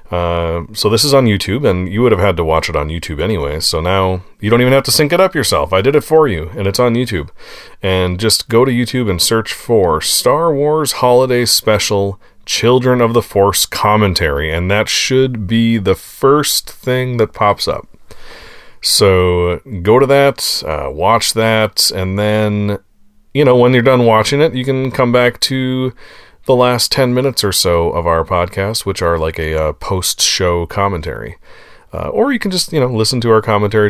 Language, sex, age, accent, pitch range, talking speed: English, male, 30-49, American, 90-125 Hz, 200 wpm